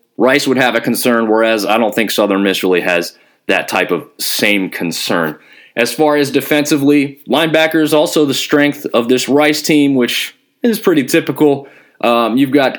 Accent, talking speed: American, 175 wpm